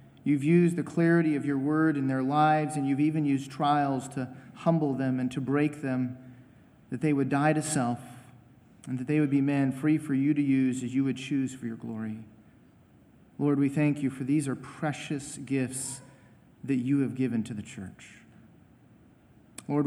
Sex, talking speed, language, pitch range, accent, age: male, 190 wpm, English, 125-150 Hz, American, 40-59